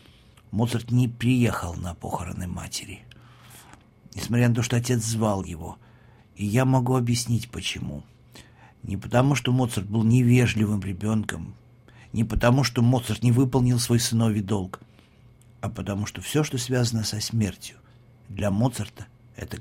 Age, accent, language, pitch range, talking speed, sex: 50-69, native, Russian, 105-120 Hz, 140 wpm, male